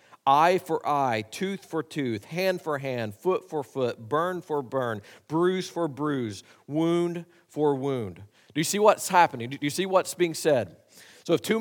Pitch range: 150-185 Hz